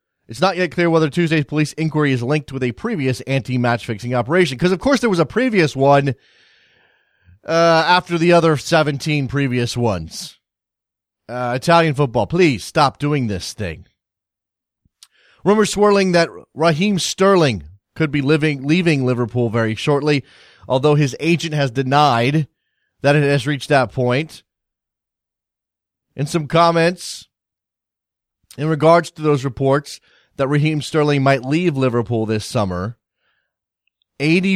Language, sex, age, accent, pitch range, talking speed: English, male, 30-49, American, 120-165 Hz, 135 wpm